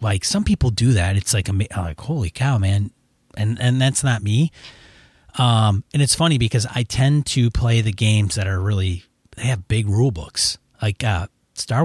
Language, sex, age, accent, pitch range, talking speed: English, male, 30-49, American, 105-125 Hz, 195 wpm